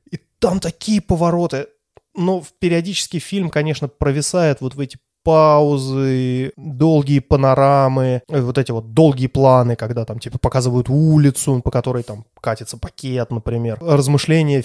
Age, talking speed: 20-39, 130 wpm